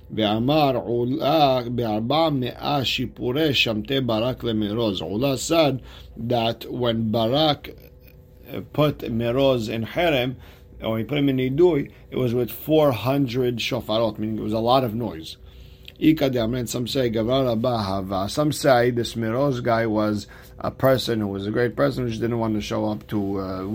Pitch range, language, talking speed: 105-130 Hz, English, 105 wpm